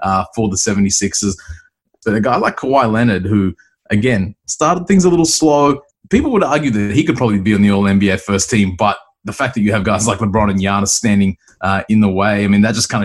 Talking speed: 235 wpm